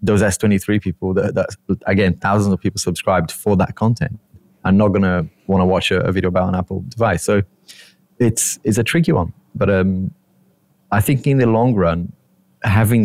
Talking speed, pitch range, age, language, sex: 195 wpm, 95-110 Hz, 20-39, English, male